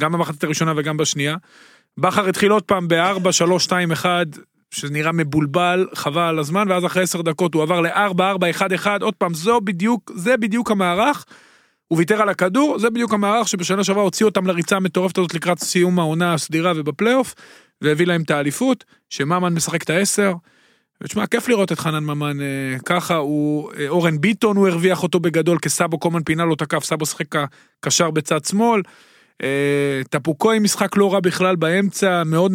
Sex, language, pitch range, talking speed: male, Hebrew, 160-200 Hz, 165 wpm